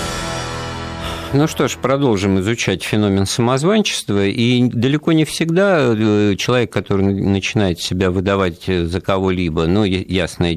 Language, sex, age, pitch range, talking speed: Russian, male, 50-69, 80-100 Hz, 120 wpm